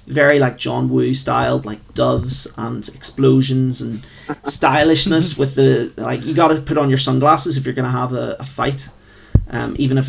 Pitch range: 125-150 Hz